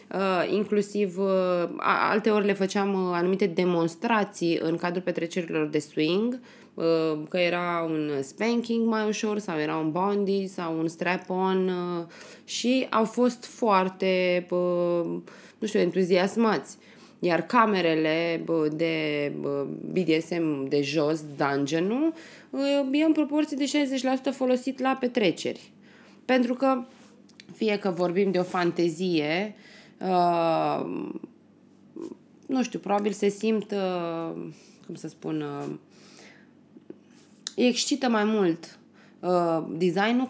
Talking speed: 120 wpm